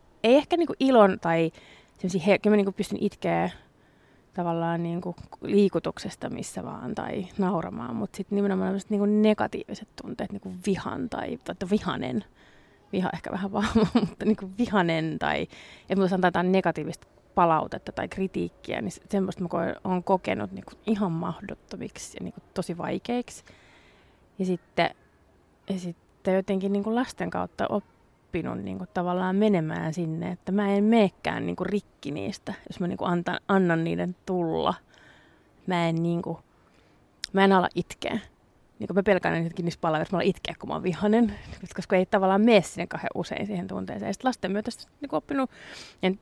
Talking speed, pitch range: 155 wpm, 175-210 Hz